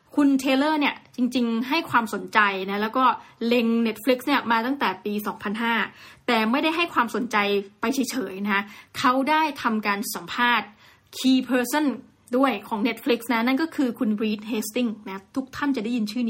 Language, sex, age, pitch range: Thai, female, 20-39, 215-270 Hz